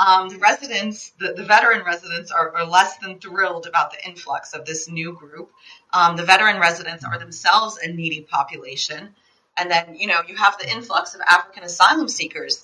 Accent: American